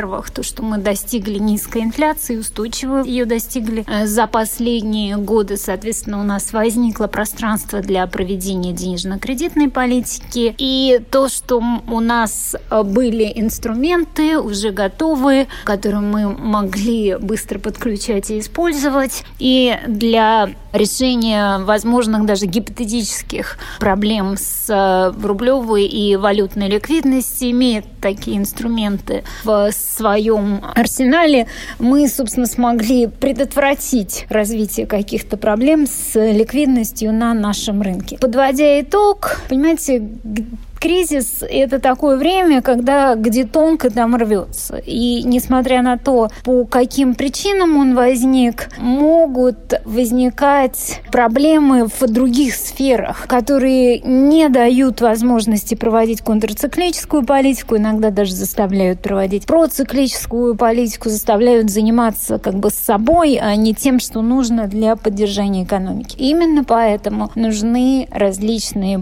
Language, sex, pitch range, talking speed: Russian, female, 215-260 Hz, 110 wpm